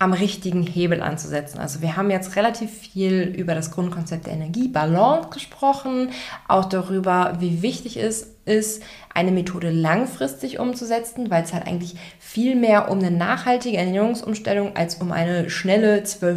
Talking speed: 145 wpm